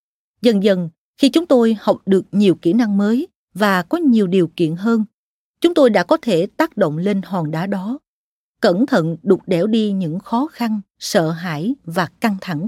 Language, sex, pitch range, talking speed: Vietnamese, female, 185-245 Hz, 195 wpm